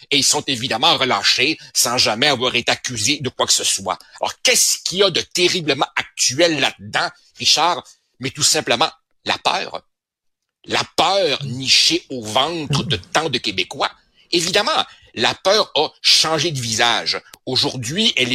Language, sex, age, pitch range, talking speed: French, male, 60-79, 125-175 Hz, 155 wpm